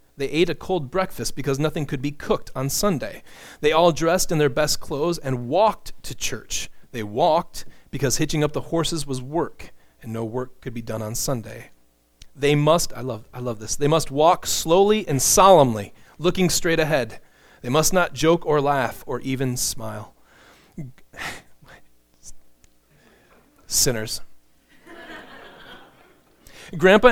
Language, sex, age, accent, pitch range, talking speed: English, male, 30-49, American, 120-170 Hz, 150 wpm